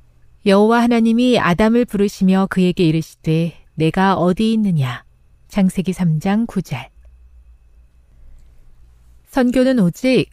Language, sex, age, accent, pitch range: Korean, female, 40-59, native, 150-230 Hz